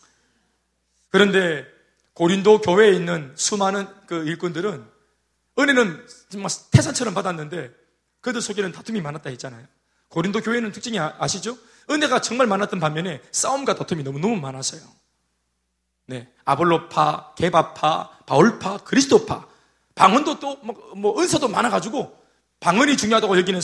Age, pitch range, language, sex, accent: 30-49, 170-260 Hz, Korean, male, native